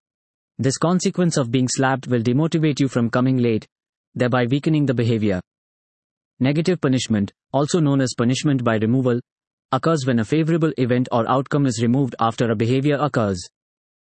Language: English